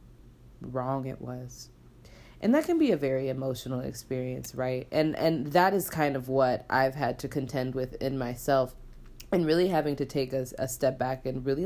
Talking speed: 190 wpm